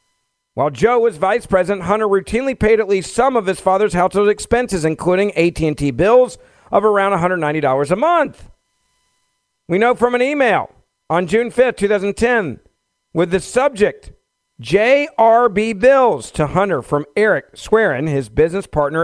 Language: English